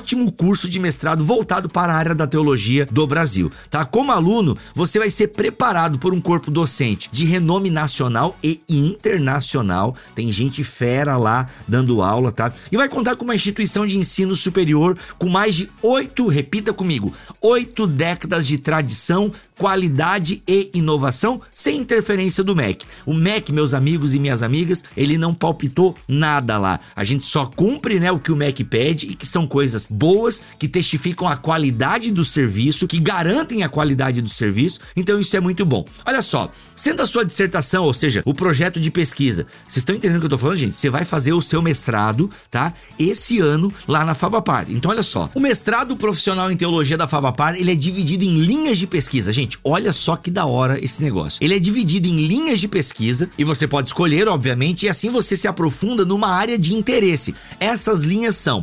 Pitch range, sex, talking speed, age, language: 145-195 Hz, male, 190 wpm, 50-69, Portuguese